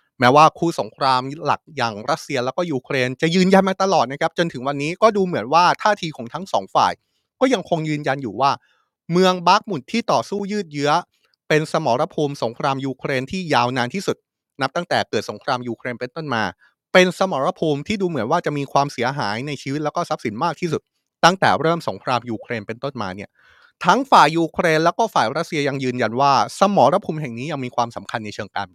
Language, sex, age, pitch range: Thai, male, 20-39, 130-180 Hz